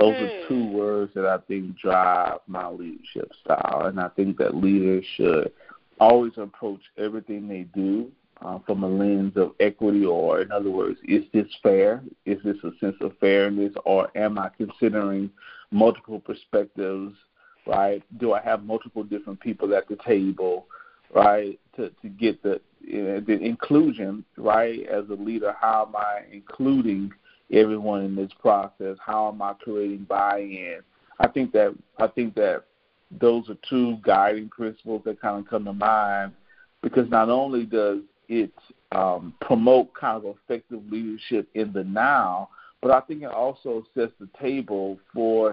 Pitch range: 100-120 Hz